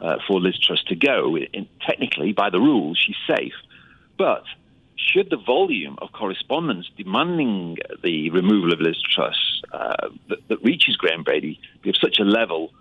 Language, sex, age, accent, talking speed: English, male, 40-59, British, 170 wpm